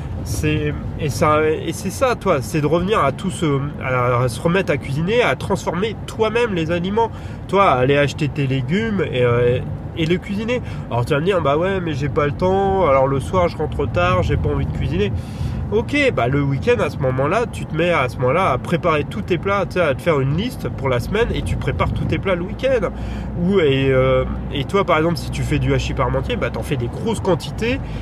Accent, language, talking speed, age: French, French, 240 wpm, 30-49